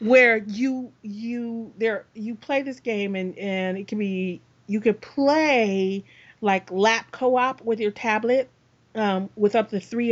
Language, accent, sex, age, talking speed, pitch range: English, American, female, 40-59, 160 wpm, 190-245 Hz